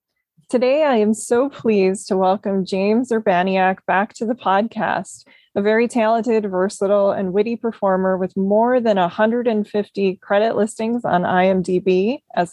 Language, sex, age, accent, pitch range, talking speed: English, female, 20-39, American, 195-225 Hz, 140 wpm